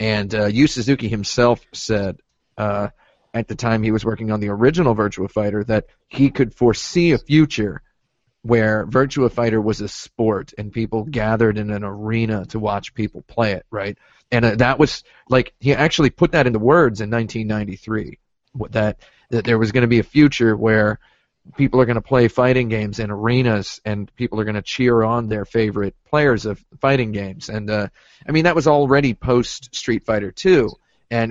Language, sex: English, male